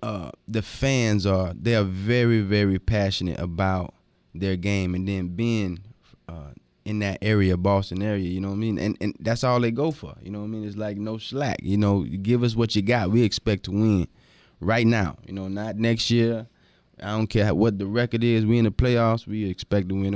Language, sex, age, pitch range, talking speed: English, male, 20-39, 95-115 Hz, 225 wpm